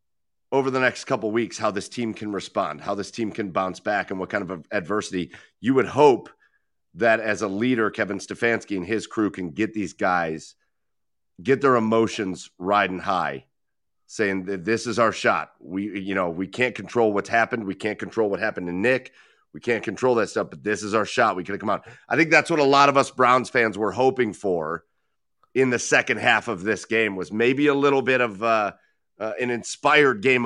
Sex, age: male, 40-59